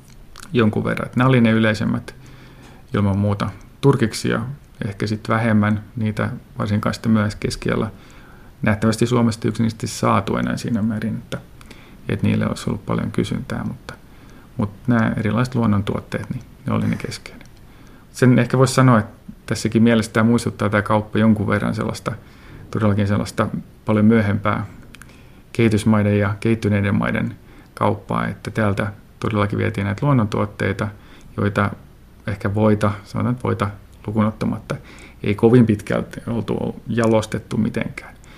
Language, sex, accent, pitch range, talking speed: Finnish, male, native, 105-115 Hz, 125 wpm